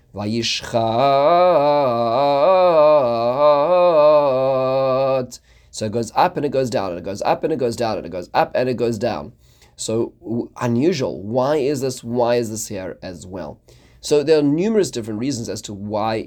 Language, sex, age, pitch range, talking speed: English, male, 30-49, 110-135 Hz, 185 wpm